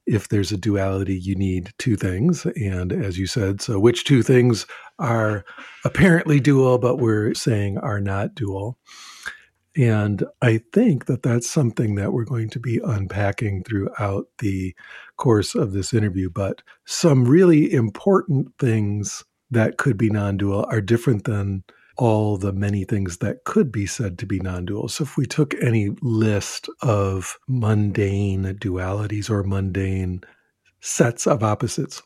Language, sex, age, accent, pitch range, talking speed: English, male, 50-69, American, 100-125 Hz, 150 wpm